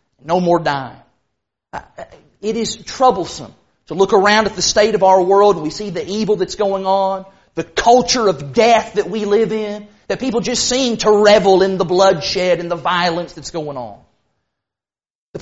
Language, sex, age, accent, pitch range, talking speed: English, male, 40-59, American, 180-225 Hz, 185 wpm